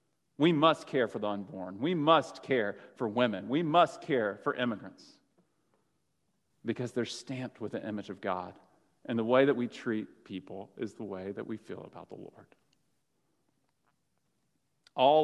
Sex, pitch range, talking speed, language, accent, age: male, 115-160 Hz, 160 wpm, English, American, 40-59